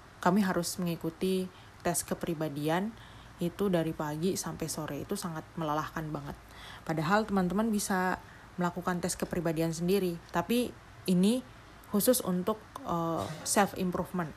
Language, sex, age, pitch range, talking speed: Indonesian, female, 30-49, 160-195 Hz, 110 wpm